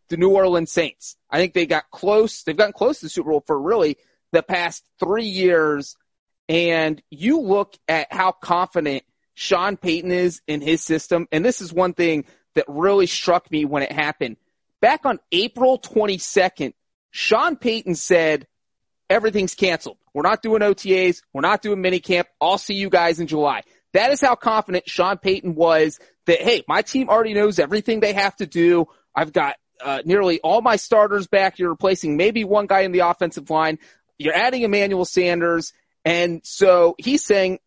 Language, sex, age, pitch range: English, male, 30-49, 170-210 Hz